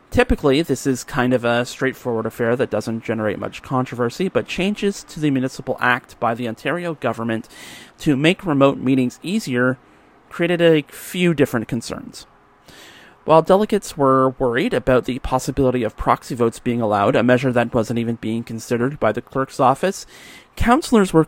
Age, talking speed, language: 30-49, 165 wpm, English